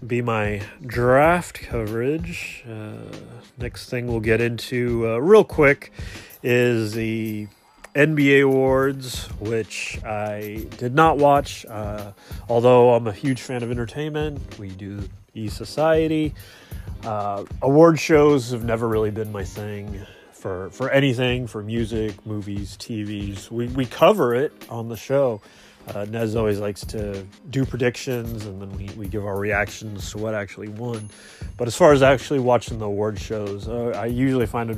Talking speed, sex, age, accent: 150 wpm, male, 30-49, American